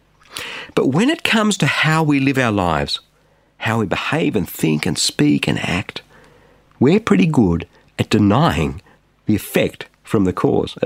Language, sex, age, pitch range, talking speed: English, male, 50-69, 105-155 Hz, 160 wpm